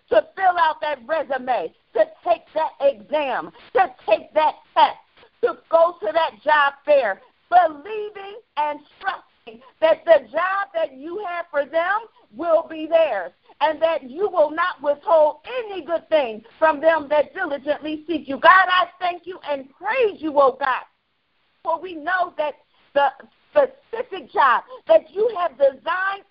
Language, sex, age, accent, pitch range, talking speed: English, female, 50-69, American, 295-375 Hz, 155 wpm